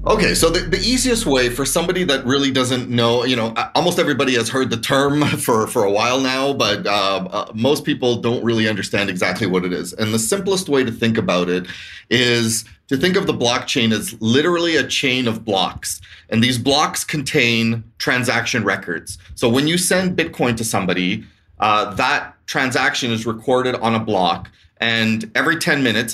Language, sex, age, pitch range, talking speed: English, male, 30-49, 110-135 Hz, 190 wpm